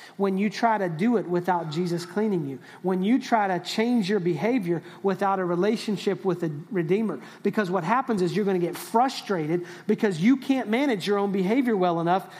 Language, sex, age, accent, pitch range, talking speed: English, male, 30-49, American, 185-225 Hz, 195 wpm